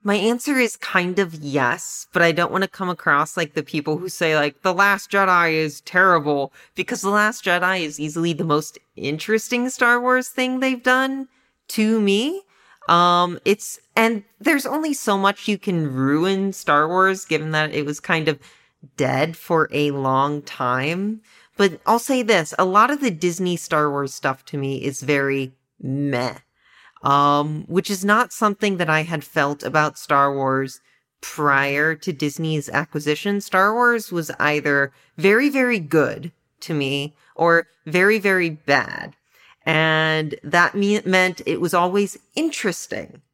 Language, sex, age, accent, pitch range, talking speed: English, female, 30-49, American, 150-200 Hz, 160 wpm